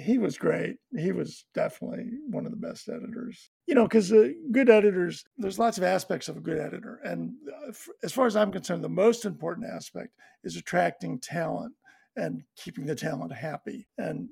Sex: male